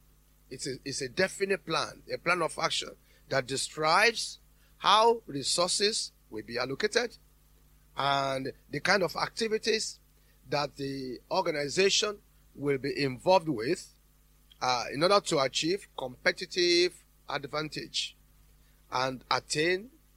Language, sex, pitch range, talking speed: English, male, 140-210 Hz, 110 wpm